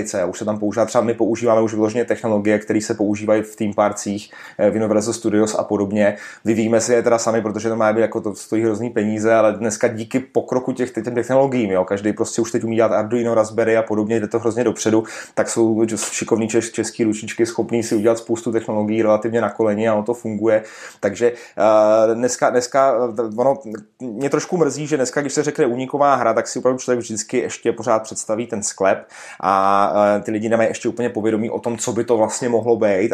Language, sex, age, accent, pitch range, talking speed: Czech, male, 20-39, native, 110-125 Hz, 200 wpm